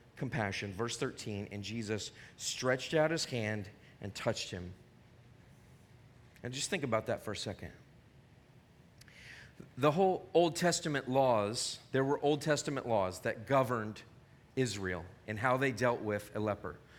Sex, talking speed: male, 140 wpm